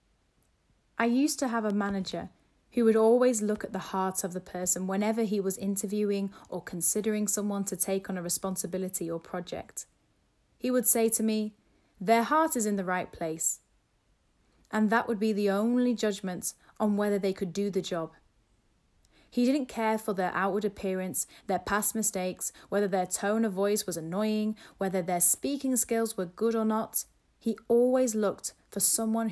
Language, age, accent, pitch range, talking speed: English, 30-49, British, 180-225 Hz, 175 wpm